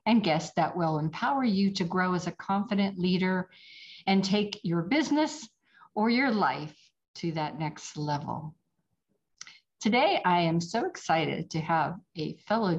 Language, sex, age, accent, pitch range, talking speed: English, female, 50-69, American, 165-210 Hz, 150 wpm